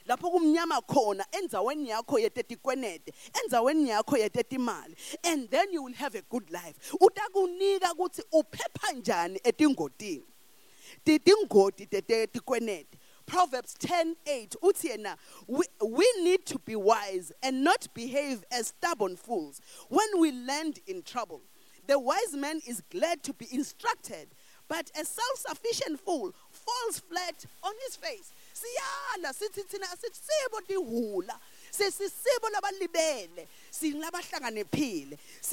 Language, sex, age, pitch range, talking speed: English, female, 30-49, 265-385 Hz, 85 wpm